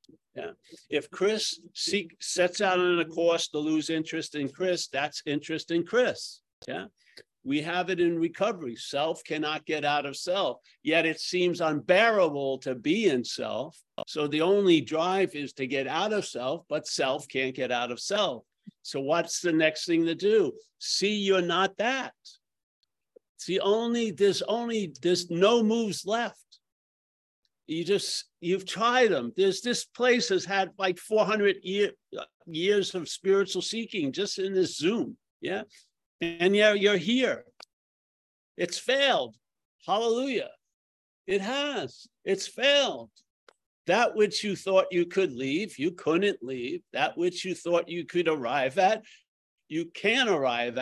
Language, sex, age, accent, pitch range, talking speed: English, male, 50-69, American, 160-205 Hz, 150 wpm